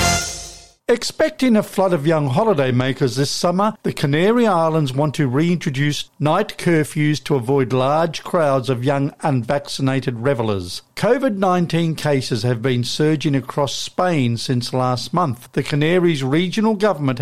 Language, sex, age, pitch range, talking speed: English, male, 50-69, 130-175 Hz, 130 wpm